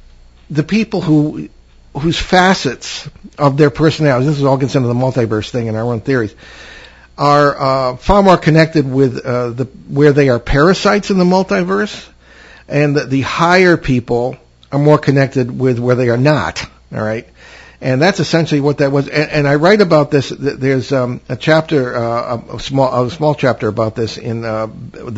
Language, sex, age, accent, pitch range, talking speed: English, male, 60-79, American, 120-150 Hz, 185 wpm